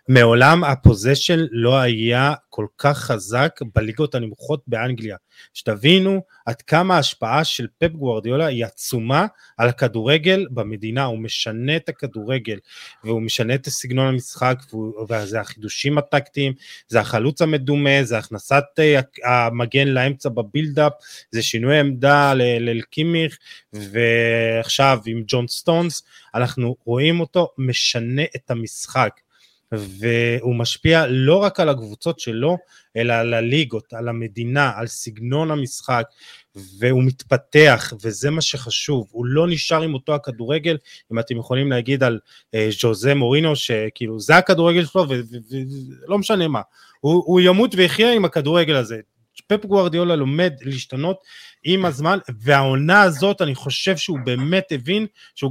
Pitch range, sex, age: 120-160 Hz, male, 20-39